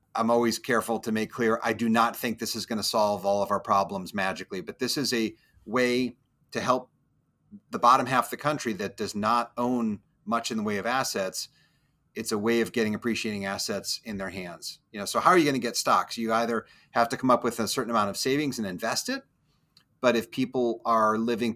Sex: male